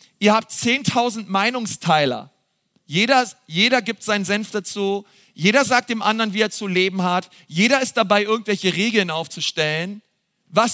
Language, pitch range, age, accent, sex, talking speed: German, 175-215 Hz, 40-59, German, male, 145 wpm